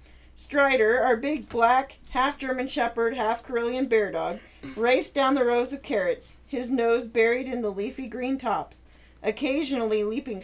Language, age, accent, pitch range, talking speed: English, 40-59, American, 210-260 Hz, 145 wpm